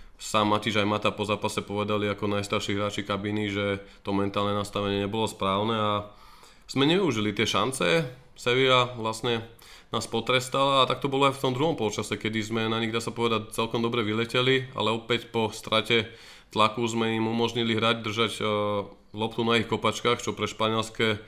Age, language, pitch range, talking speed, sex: 20-39, Slovak, 100-115 Hz, 180 wpm, male